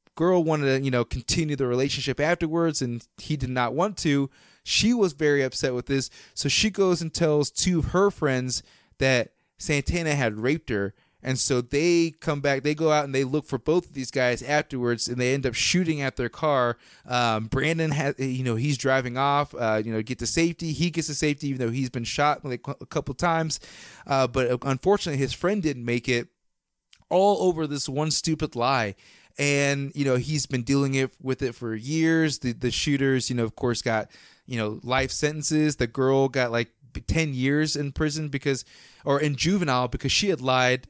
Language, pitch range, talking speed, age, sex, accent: English, 125-155 Hz, 205 wpm, 30-49, male, American